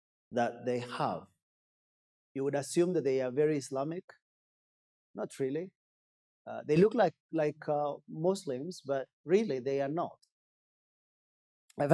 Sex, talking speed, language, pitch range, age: male, 130 wpm, English, 120-160 Hz, 30-49